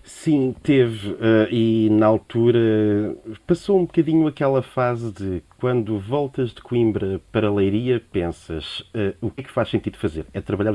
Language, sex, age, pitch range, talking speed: Portuguese, male, 30-49, 100-125 Hz, 150 wpm